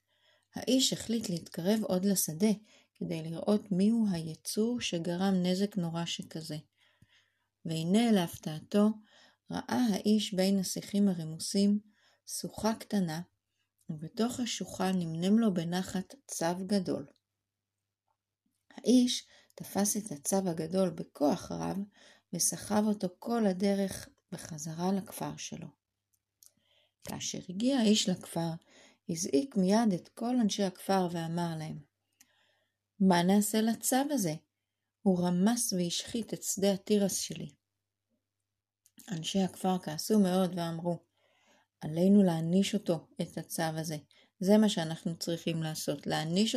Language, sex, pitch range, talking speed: Hebrew, female, 165-205 Hz, 105 wpm